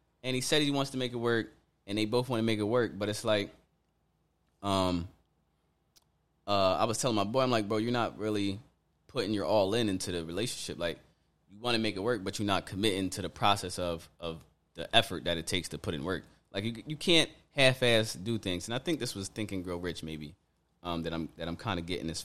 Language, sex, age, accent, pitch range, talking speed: English, male, 20-39, American, 90-115 Hz, 245 wpm